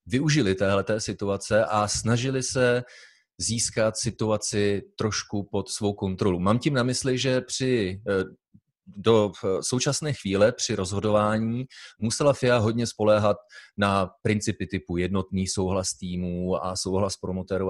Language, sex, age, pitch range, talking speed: Czech, male, 30-49, 100-120 Hz, 120 wpm